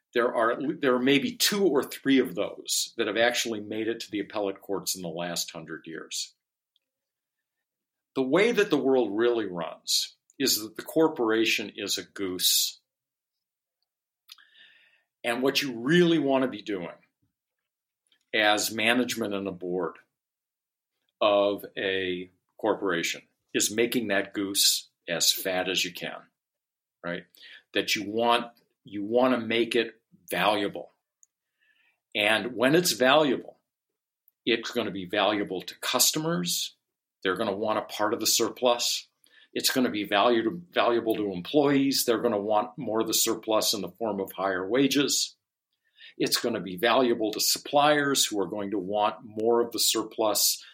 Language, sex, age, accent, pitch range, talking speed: English, male, 50-69, American, 100-135 Hz, 155 wpm